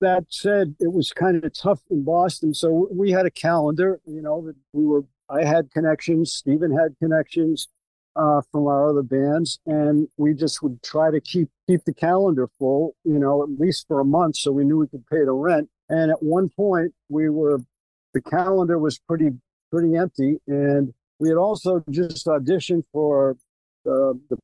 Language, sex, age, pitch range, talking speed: English, male, 50-69, 140-165 Hz, 190 wpm